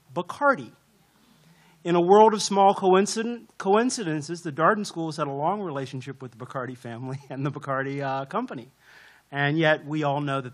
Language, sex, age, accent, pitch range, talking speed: English, male, 40-59, American, 140-180 Hz, 165 wpm